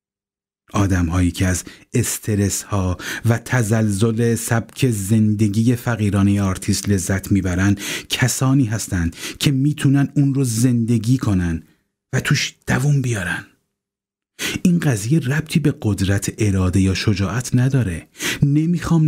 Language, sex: Persian, male